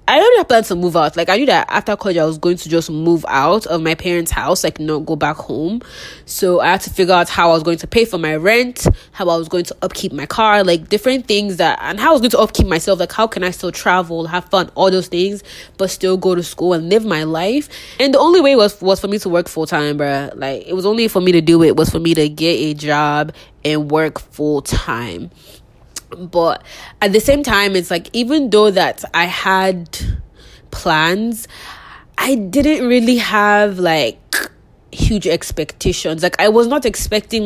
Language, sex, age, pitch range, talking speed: English, female, 20-39, 165-205 Hz, 225 wpm